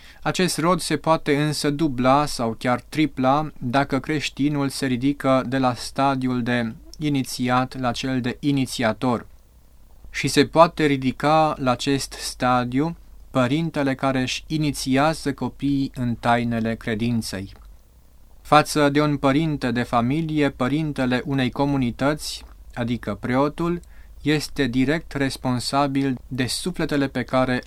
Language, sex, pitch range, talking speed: Romanian, male, 120-145 Hz, 120 wpm